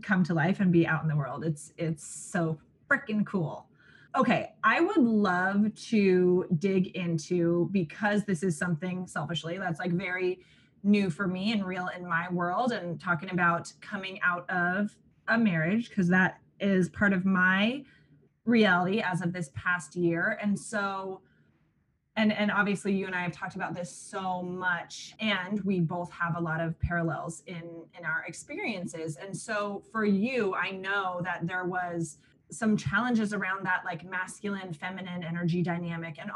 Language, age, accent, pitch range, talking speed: English, 20-39, American, 175-200 Hz, 170 wpm